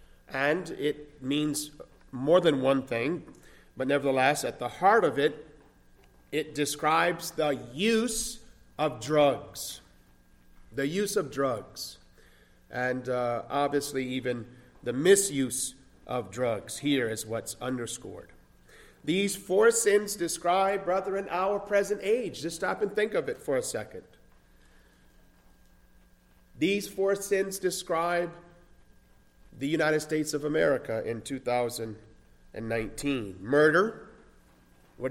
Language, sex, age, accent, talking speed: English, male, 50-69, American, 115 wpm